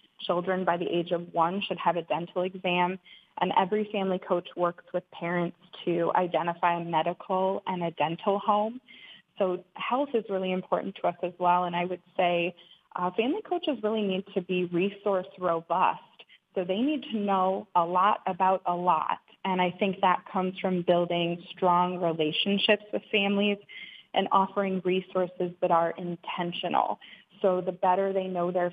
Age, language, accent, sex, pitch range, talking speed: 20-39, English, American, female, 175-190 Hz, 170 wpm